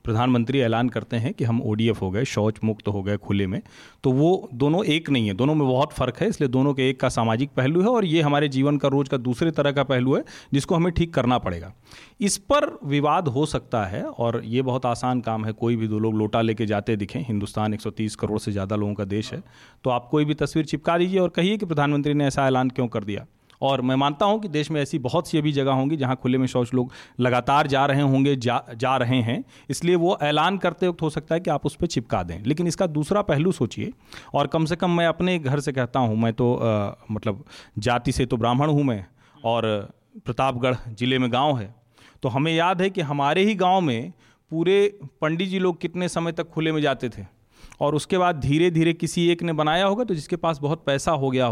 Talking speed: 240 wpm